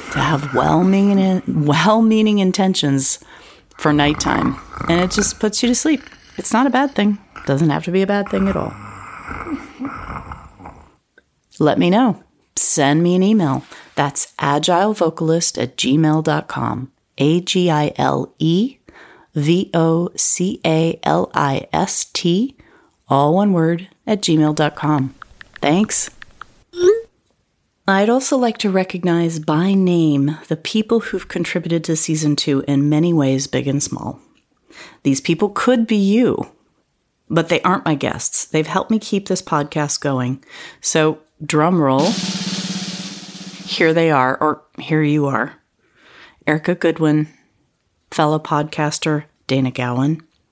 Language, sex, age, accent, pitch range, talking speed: English, female, 30-49, American, 150-195 Hz, 115 wpm